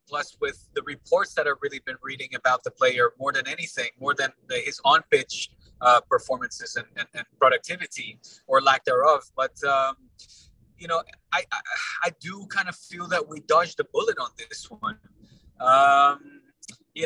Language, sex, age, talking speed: English, male, 20-39, 175 wpm